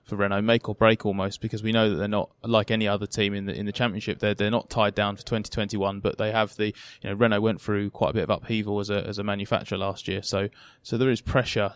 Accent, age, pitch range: British, 20-39, 105-120 Hz